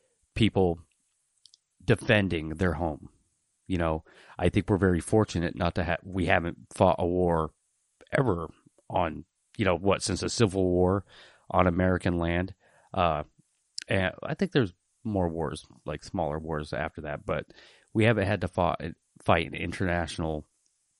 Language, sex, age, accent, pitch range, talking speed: English, male, 30-49, American, 80-95 Hz, 150 wpm